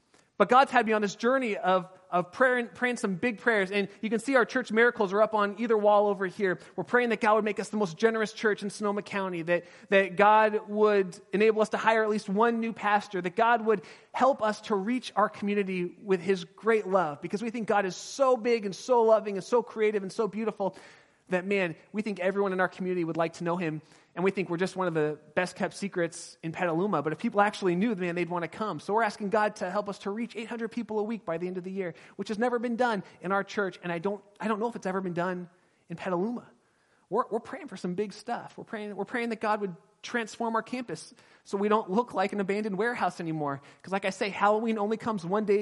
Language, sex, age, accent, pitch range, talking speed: English, male, 30-49, American, 185-220 Hz, 255 wpm